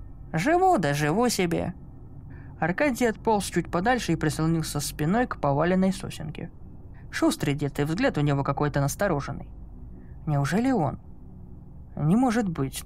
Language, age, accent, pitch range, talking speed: Russian, 20-39, native, 145-195 Hz, 125 wpm